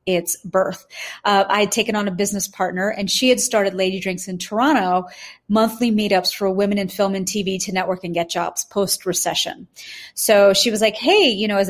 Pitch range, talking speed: 185-220 Hz, 210 wpm